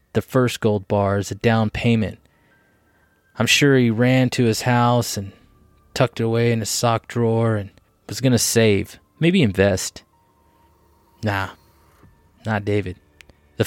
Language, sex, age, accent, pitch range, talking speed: English, male, 20-39, American, 95-115 Hz, 150 wpm